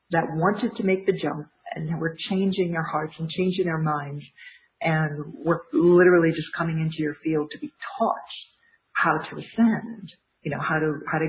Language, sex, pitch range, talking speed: English, female, 155-200 Hz, 185 wpm